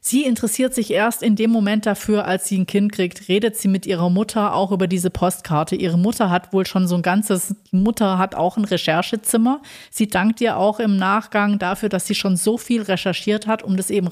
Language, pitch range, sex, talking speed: German, 185-215 Hz, female, 220 wpm